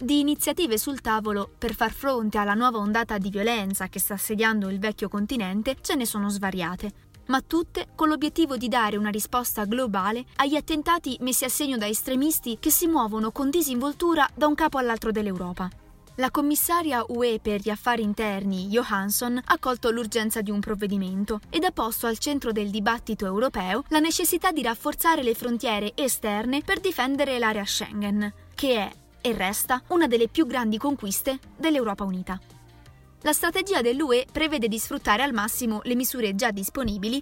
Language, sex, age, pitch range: Italian, female, 20-39, 210-280 Hz